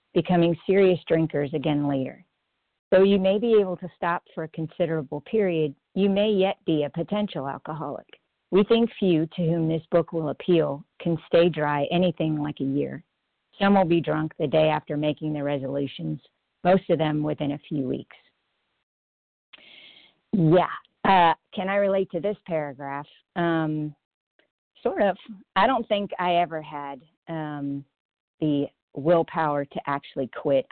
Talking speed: 155 wpm